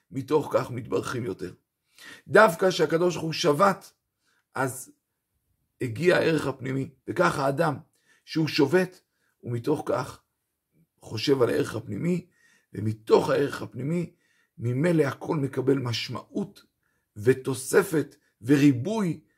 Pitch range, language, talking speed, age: 125-160 Hz, Hebrew, 100 wpm, 50-69